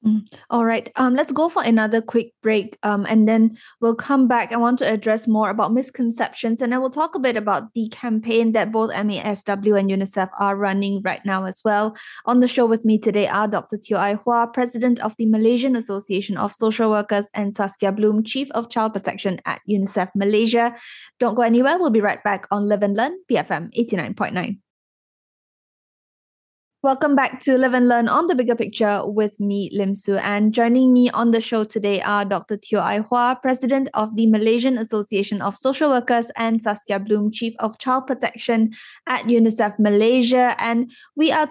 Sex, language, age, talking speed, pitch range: female, English, 10-29, 190 wpm, 210-245 Hz